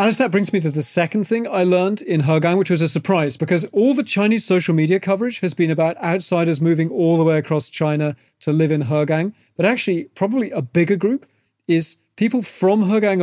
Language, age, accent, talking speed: English, 30-49, British, 215 wpm